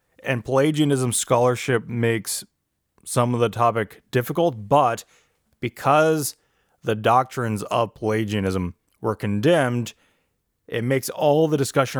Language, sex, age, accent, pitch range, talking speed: English, male, 20-39, American, 105-130 Hz, 110 wpm